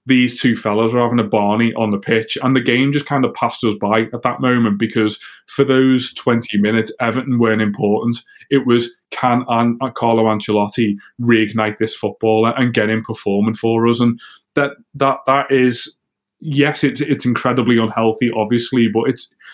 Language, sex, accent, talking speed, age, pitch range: English, male, British, 175 wpm, 20-39, 110-130 Hz